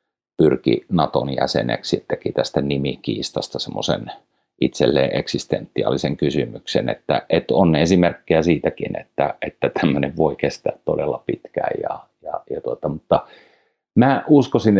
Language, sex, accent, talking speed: Finnish, male, native, 120 wpm